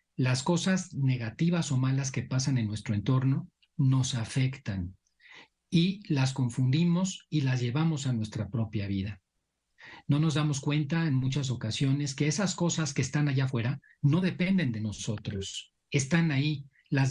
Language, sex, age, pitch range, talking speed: Spanish, male, 40-59, 120-150 Hz, 150 wpm